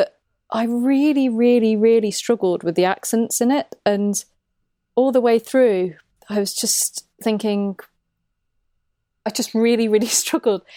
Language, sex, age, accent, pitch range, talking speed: English, female, 30-49, British, 185-230 Hz, 135 wpm